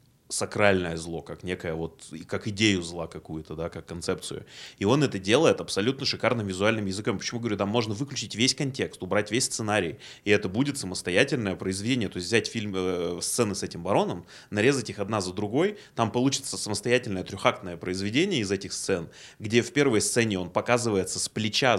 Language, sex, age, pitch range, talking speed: Russian, male, 20-39, 90-115 Hz, 180 wpm